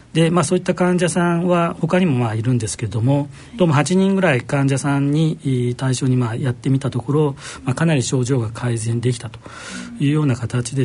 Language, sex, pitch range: Japanese, male, 125-170 Hz